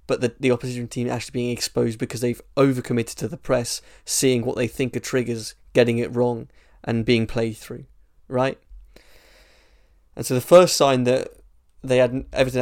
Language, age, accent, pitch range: English, 20-39, British, 115-130 Hz